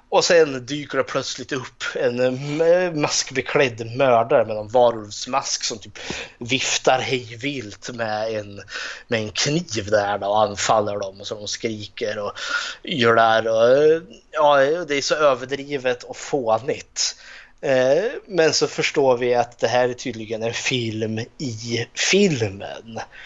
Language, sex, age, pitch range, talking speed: Swedish, male, 20-39, 110-140 Hz, 135 wpm